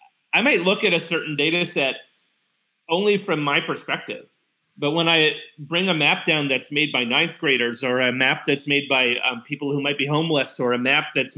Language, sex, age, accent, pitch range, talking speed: English, male, 40-59, American, 135-165 Hz, 210 wpm